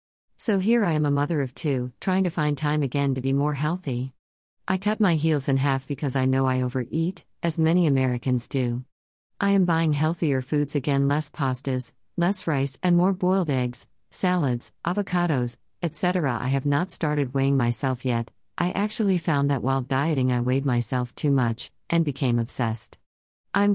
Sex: female